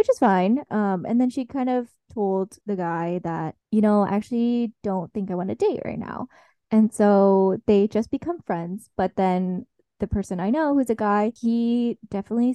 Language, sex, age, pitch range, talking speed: English, female, 20-39, 185-230 Hz, 200 wpm